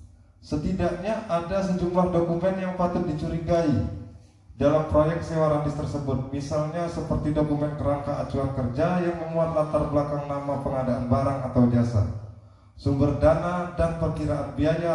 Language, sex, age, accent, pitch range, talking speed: Indonesian, male, 20-39, native, 130-175 Hz, 130 wpm